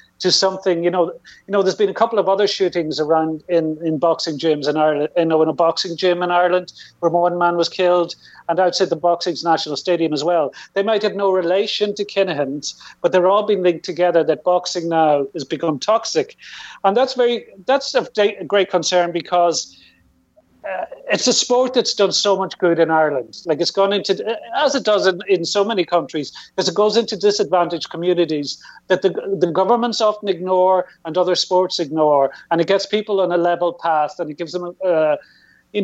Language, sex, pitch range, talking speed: English, male, 170-205 Hz, 205 wpm